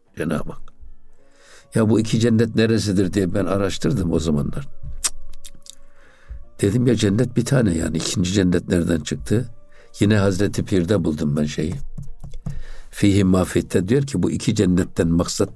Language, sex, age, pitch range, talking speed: Turkish, male, 60-79, 90-115 Hz, 145 wpm